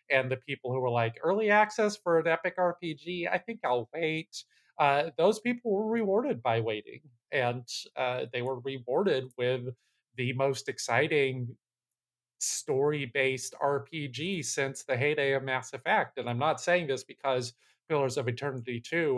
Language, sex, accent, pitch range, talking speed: English, male, American, 120-150 Hz, 155 wpm